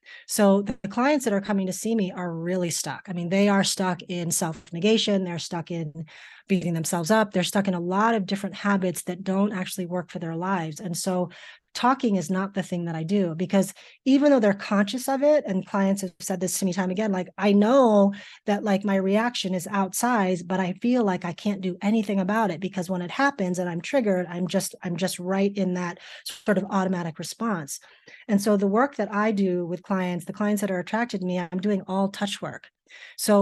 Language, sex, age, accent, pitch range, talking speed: English, female, 30-49, American, 180-205 Hz, 225 wpm